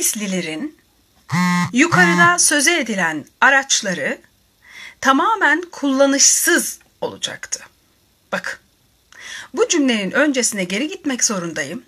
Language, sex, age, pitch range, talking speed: Turkish, female, 40-59, 215-295 Hz, 75 wpm